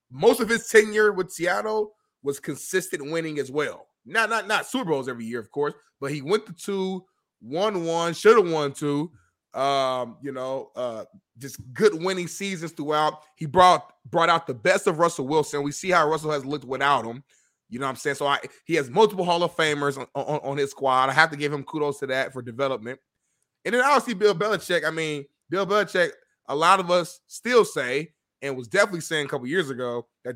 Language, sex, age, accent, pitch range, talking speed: English, male, 20-39, American, 140-185 Hz, 215 wpm